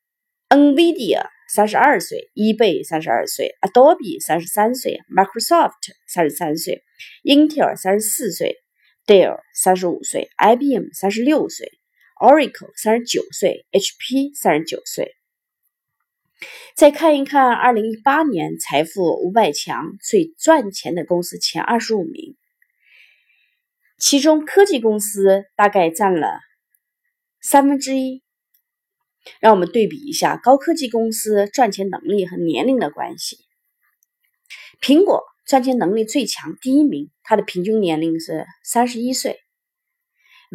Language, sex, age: Chinese, female, 30-49